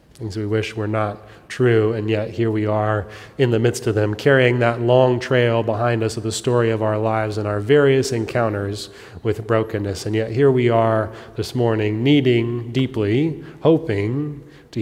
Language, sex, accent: English, male, American